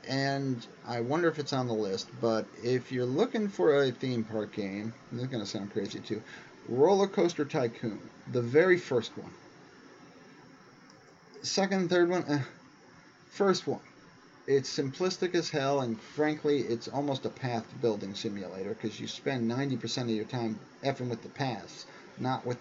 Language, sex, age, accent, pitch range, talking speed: English, male, 40-59, American, 115-145 Hz, 165 wpm